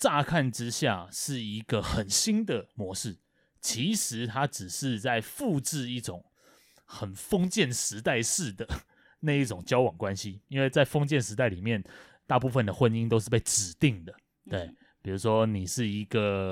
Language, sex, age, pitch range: Chinese, male, 20-39, 100-135 Hz